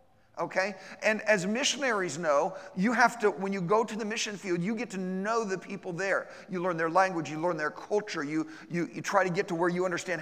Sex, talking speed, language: male, 235 wpm, English